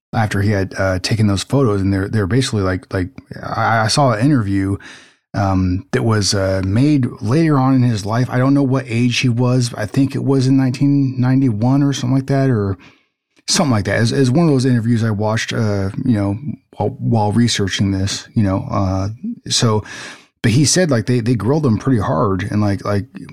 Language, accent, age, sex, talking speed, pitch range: English, American, 30-49, male, 210 wpm, 100-130 Hz